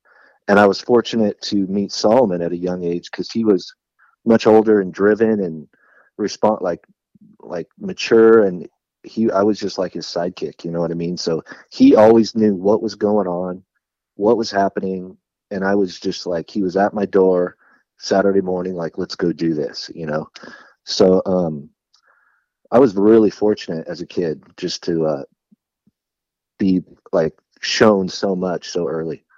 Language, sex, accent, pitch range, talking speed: English, male, American, 90-110 Hz, 175 wpm